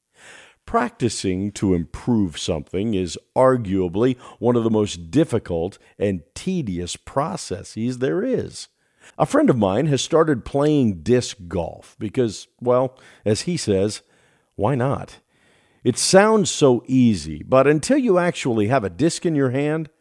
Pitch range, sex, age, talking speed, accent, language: 100-150 Hz, male, 50-69, 140 wpm, American, English